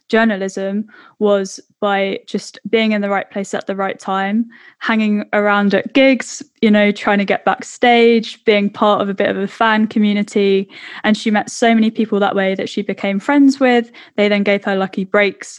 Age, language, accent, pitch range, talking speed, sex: 10-29, English, British, 200-225 Hz, 195 wpm, female